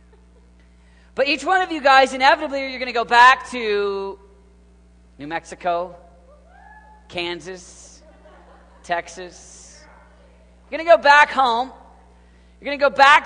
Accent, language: American, English